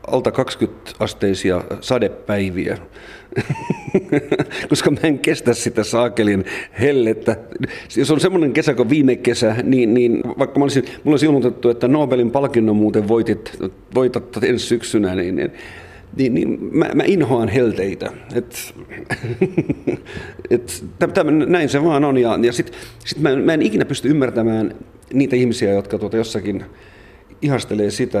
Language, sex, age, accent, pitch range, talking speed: Finnish, male, 50-69, native, 105-130 Hz, 130 wpm